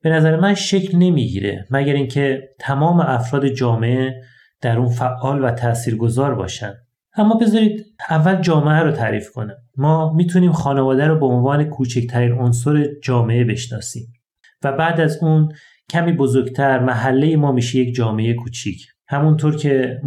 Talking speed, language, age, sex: 145 wpm, Persian, 30-49, male